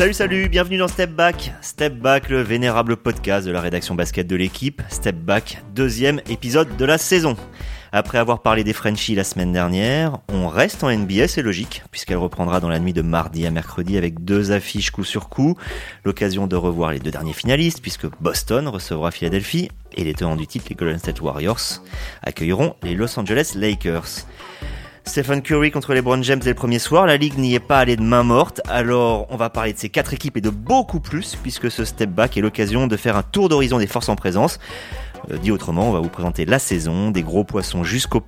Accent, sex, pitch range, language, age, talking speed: French, male, 95-140 Hz, French, 30-49, 215 wpm